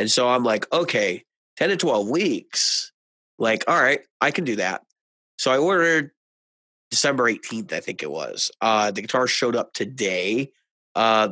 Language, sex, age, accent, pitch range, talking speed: English, male, 30-49, American, 110-140 Hz, 170 wpm